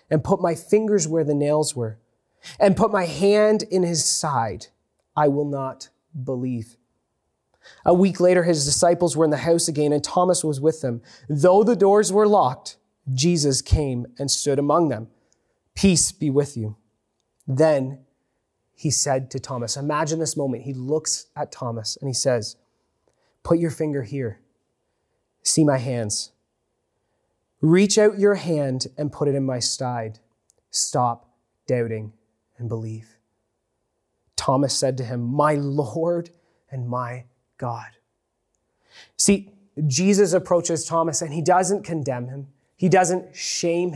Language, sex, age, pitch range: English, male, 20-39, 125-170 Hz